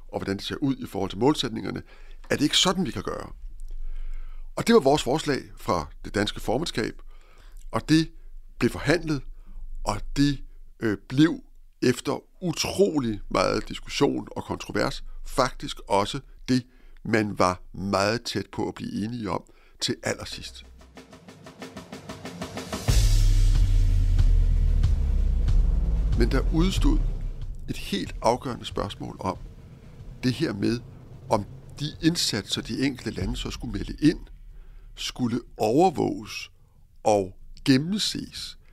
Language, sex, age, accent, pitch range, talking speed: Danish, male, 60-79, native, 95-140 Hz, 120 wpm